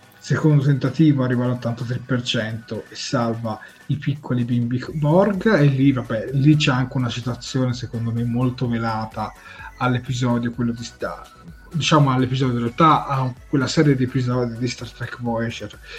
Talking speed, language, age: 145 wpm, Italian, 30-49